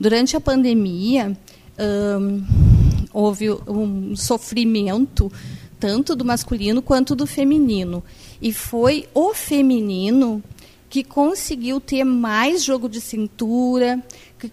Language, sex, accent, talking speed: Portuguese, female, Brazilian, 100 wpm